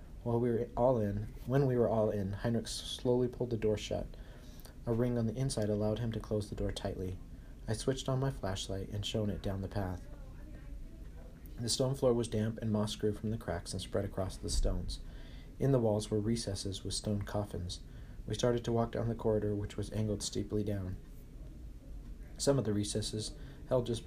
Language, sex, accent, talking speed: English, male, American, 200 wpm